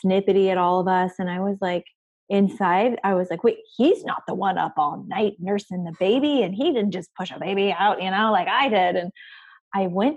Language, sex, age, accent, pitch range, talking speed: English, female, 20-39, American, 165-205 Hz, 235 wpm